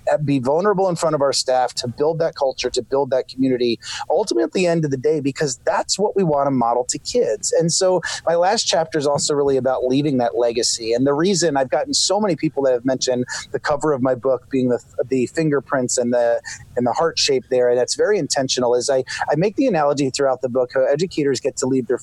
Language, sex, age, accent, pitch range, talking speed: English, male, 30-49, American, 125-155 Hz, 245 wpm